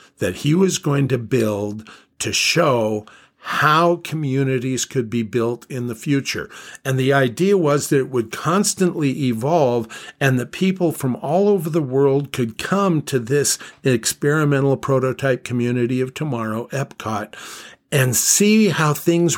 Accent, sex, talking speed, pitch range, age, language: American, male, 145 wpm, 120-150 Hz, 50-69, English